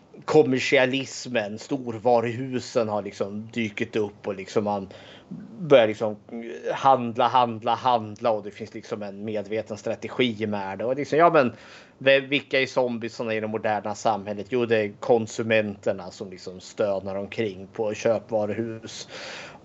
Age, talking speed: 30-49, 140 wpm